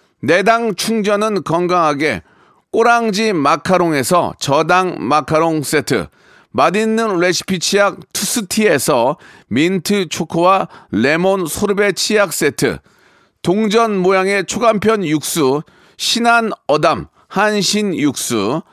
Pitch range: 175-220 Hz